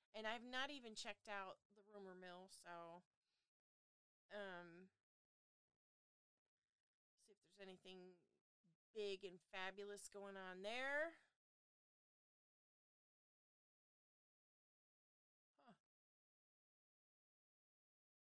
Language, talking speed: English, 70 wpm